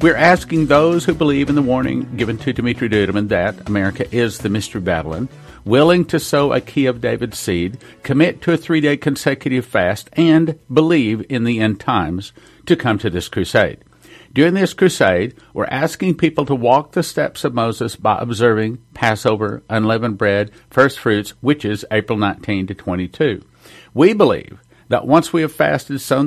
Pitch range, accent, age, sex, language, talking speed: 110-150 Hz, American, 50-69, male, English, 175 wpm